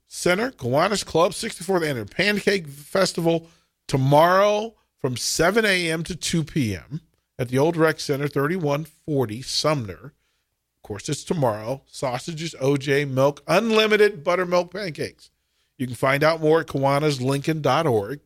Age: 40-59